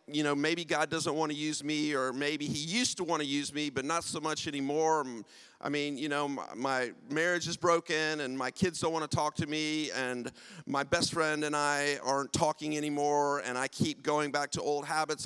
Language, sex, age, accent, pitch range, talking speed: English, male, 40-59, American, 145-175 Hz, 230 wpm